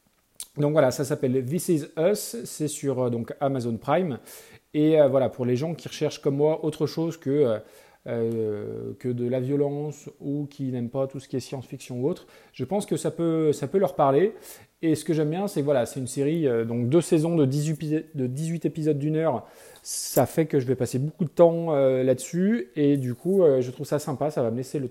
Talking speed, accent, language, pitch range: 240 wpm, French, French, 130-160 Hz